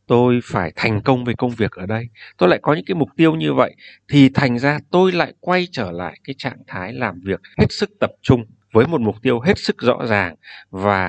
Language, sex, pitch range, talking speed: Vietnamese, male, 105-140 Hz, 240 wpm